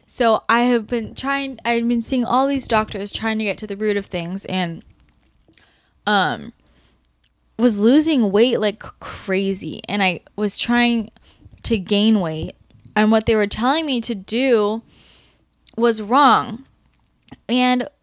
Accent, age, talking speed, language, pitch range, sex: American, 10-29, 145 wpm, English, 205-240 Hz, female